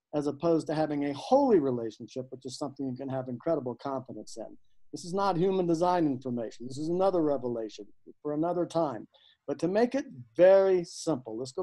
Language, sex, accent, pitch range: English, male, American, 155-210 Hz